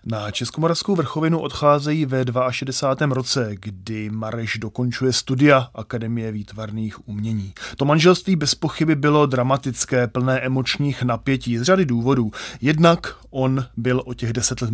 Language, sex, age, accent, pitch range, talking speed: Czech, male, 30-49, native, 120-150 Hz, 130 wpm